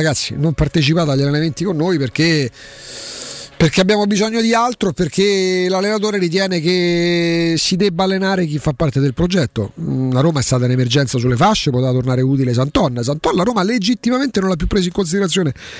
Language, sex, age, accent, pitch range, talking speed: Italian, male, 40-59, native, 160-210 Hz, 180 wpm